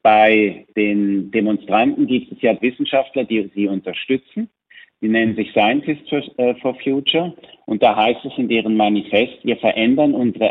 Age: 50-69